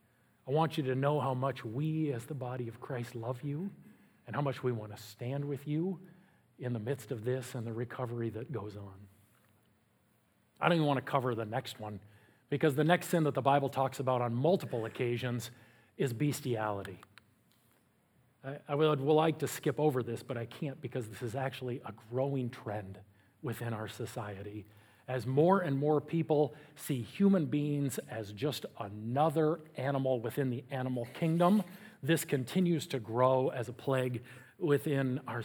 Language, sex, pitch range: English, male, 120-150 Hz